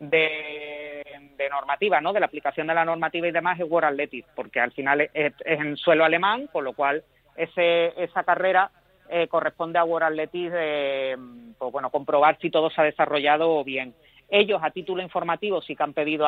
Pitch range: 140-175 Hz